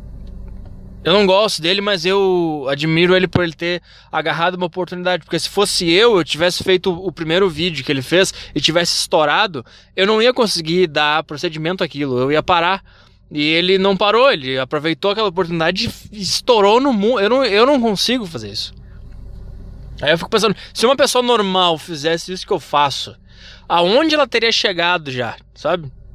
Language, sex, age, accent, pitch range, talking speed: Portuguese, male, 20-39, Brazilian, 135-190 Hz, 175 wpm